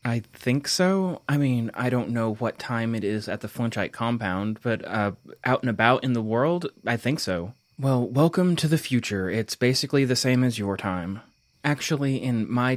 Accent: American